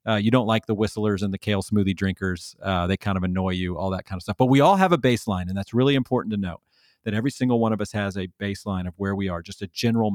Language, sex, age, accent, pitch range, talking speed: English, male, 40-59, American, 100-125 Hz, 295 wpm